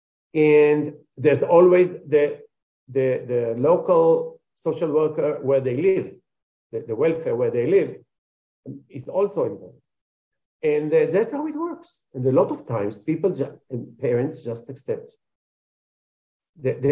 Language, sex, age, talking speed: English, male, 50-69, 135 wpm